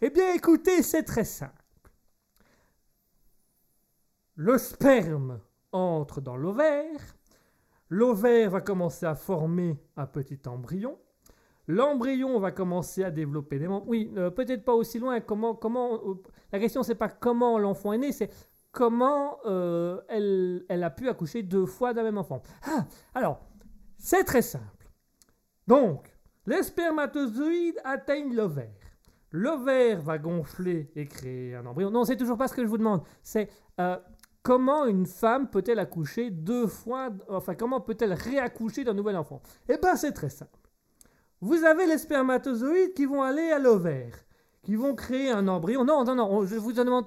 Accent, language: French, French